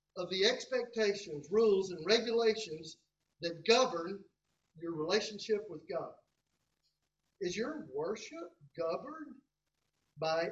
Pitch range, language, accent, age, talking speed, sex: 160-225 Hz, English, American, 50-69, 95 wpm, male